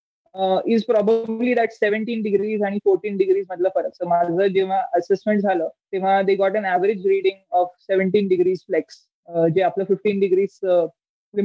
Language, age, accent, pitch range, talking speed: Marathi, 20-39, native, 185-215 Hz, 145 wpm